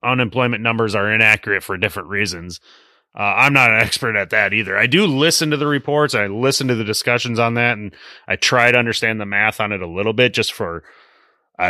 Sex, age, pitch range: male, 30-49, 105-140 Hz